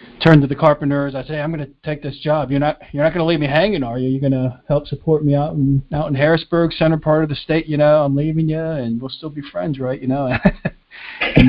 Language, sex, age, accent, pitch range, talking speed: English, male, 40-59, American, 125-145 Hz, 260 wpm